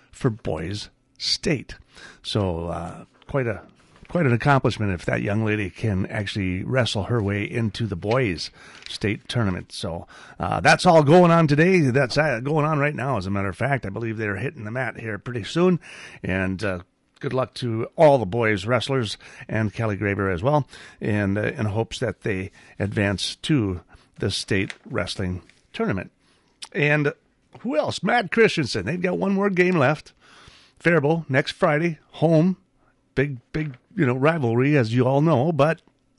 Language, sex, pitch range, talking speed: English, male, 105-145 Hz, 165 wpm